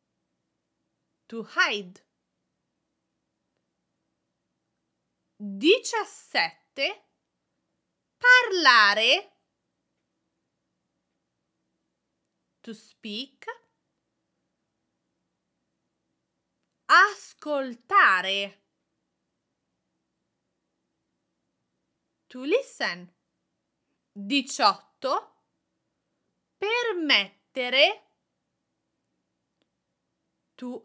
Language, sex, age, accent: English, female, 30-49, Italian